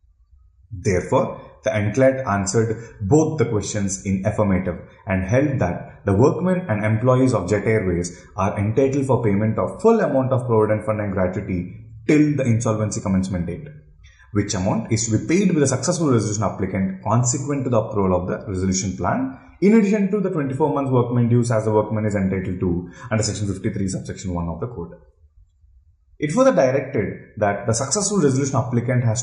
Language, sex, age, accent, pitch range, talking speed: English, male, 30-49, Indian, 95-140 Hz, 175 wpm